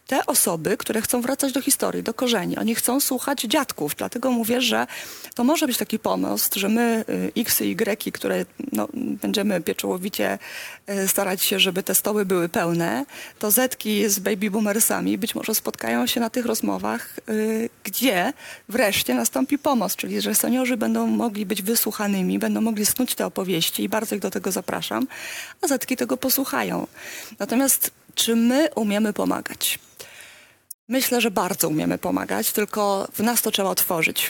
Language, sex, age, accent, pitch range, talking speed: Polish, female, 30-49, native, 195-235 Hz, 155 wpm